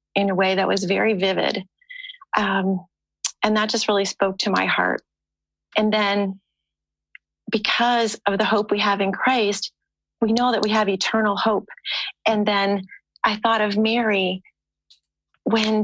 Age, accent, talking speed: 40-59, American, 150 wpm